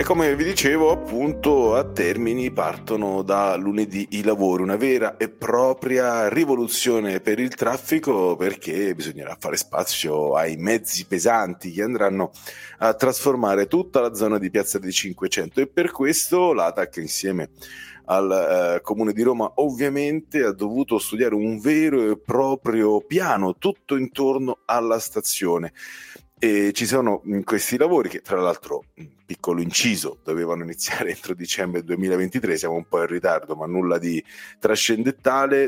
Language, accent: Italian, native